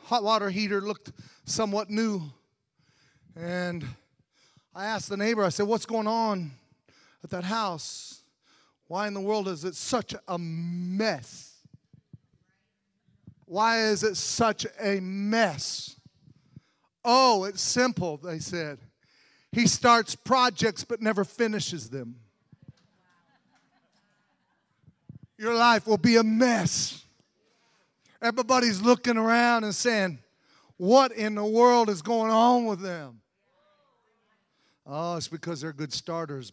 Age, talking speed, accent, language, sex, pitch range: 40-59, 120 wpm, American, English, male, 150-220 Hz